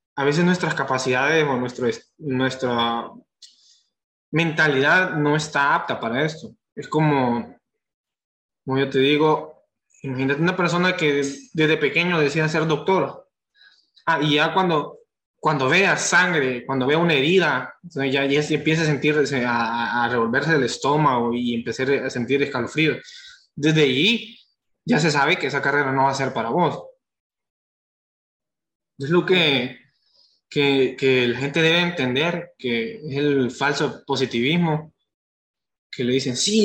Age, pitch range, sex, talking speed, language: 20-39, 135-165 Hz, male, 140 wpm, Spanish